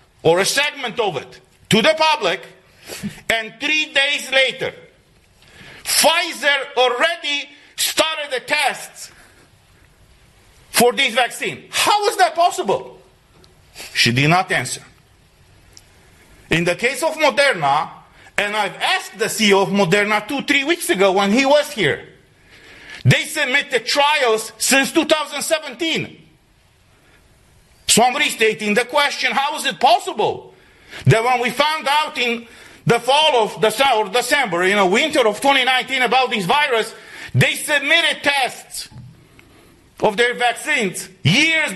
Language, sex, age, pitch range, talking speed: English, male, 50-69, 195-290 Hz, 125 wpm